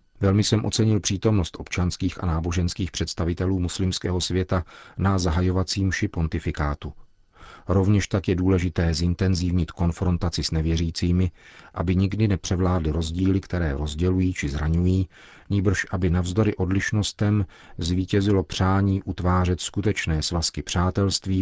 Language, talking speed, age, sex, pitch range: Czech, 110 wpm, 40-59, male, 85-95 Hz